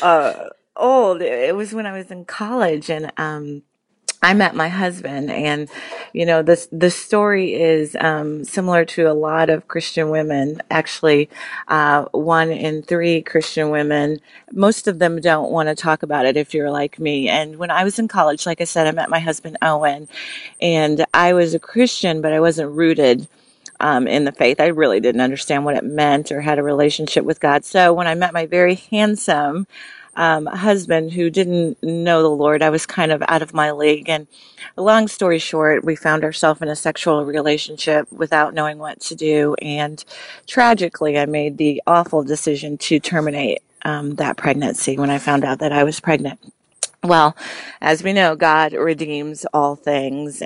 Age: 30-49